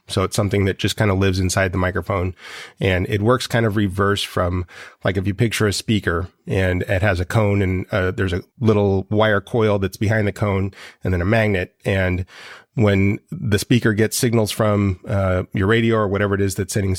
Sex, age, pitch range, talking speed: male, 30-49, 95-110 Hz, 210 wpm